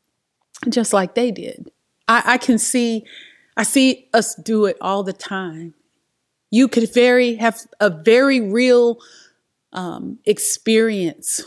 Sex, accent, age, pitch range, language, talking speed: female, American, 30-49, 165-220 Hz, English, 130 wpm